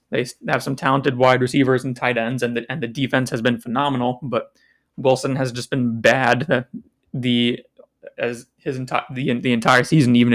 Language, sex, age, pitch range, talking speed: English, male, 20-39, 115-135 Hz, 185 wpm